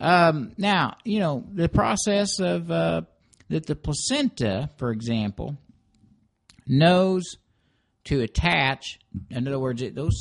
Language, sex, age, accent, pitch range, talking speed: English, male, 60-79, American, 110-150 Hz, 120 wpm